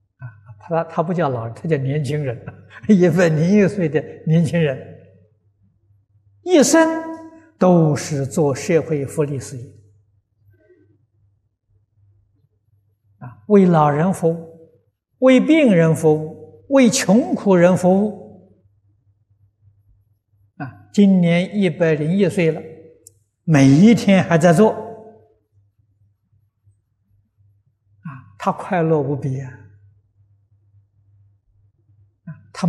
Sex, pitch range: male, 100-160 Hz